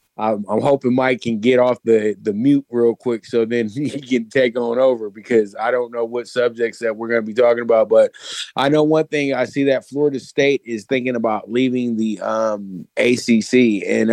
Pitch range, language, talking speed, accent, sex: 115-135 Hz, English, 210 wpm, American, male